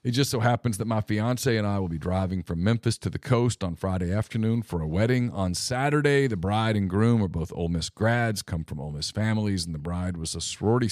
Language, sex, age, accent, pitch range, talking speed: English, male, 40-59, American, 95-130 Hz, 245 wpm